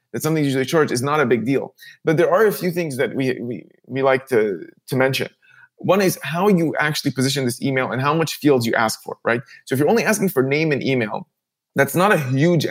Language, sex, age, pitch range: English, male, 20-39, 130-165 Hz